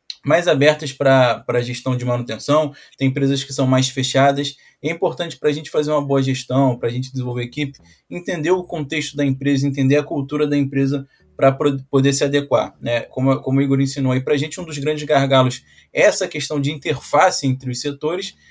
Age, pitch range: 20-39, 130-155 Hz